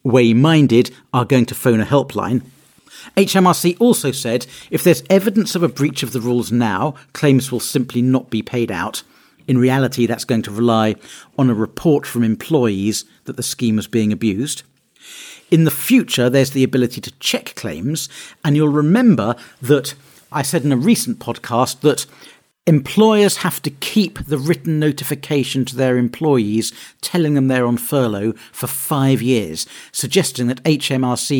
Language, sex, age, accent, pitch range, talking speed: English, male, 50-69, British, 120-150 Hz, 160 wpm